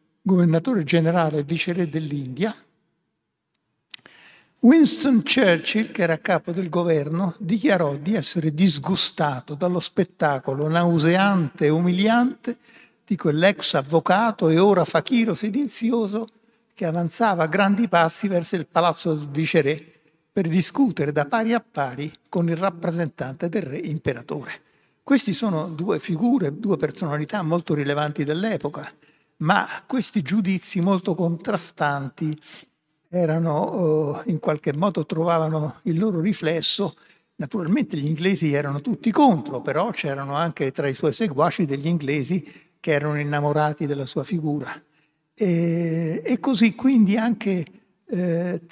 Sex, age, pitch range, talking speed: male, 60-79, 155-205 Hz, 125 wpm